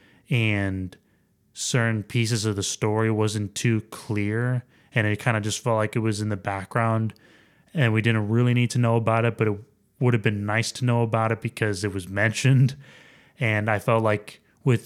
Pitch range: 105-125 Hz